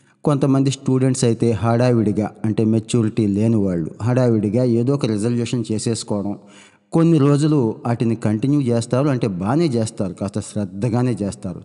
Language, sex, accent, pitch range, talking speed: Telugu, male, native, 105-125 Hz, 125 wpm